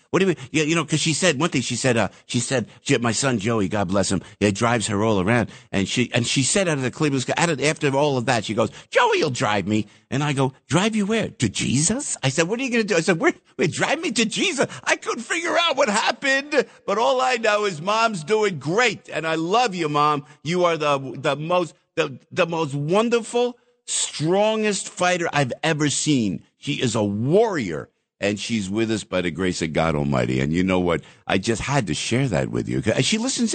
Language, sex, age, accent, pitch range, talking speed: English, male, 50-69, American, 115-185 Hz, 240 wpm